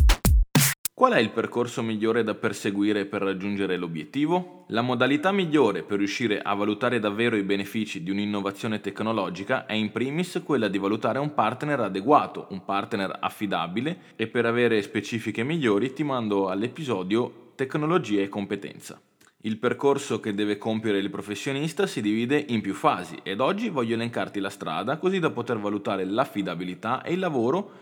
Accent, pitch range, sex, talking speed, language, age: native, 105-150 Hz, male, 155 wpm, Italian, 20-39